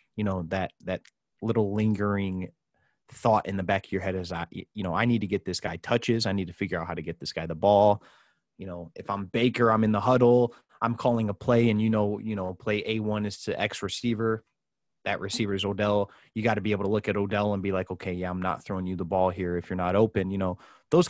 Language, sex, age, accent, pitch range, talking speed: English, male, 20-39, American, 95-110 Hz, 260 wpm